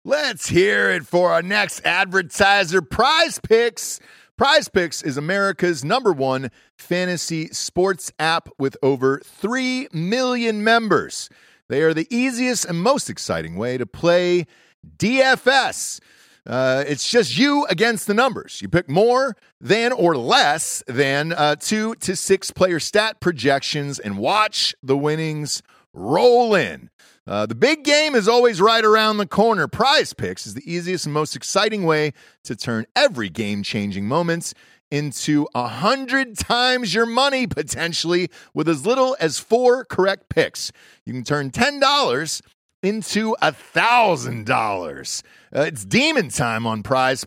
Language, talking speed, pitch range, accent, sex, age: English, 145 wpm, 150-230 Hz, American, male, 40-59